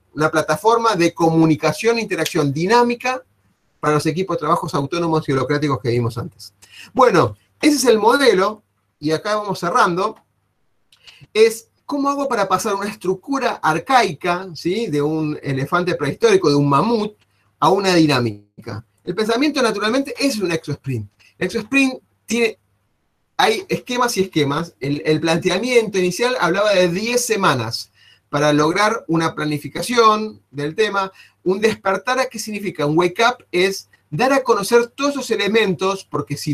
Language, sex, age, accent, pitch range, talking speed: Spanish, male, 30-49, Argentinian, 150-220 Hz, 150 wpm